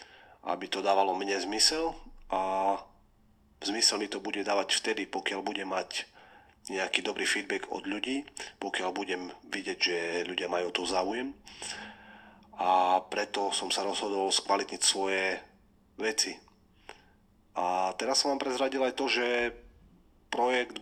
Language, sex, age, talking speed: Slovak, male, 40-59, 135 wpm